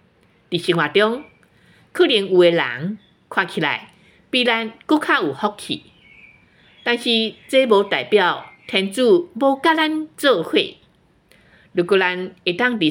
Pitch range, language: 165-250 Hz, Chinese